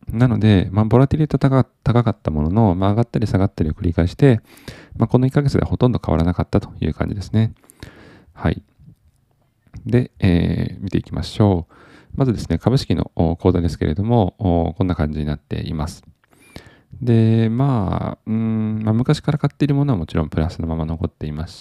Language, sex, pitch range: Japanese, male, 85-120 Hz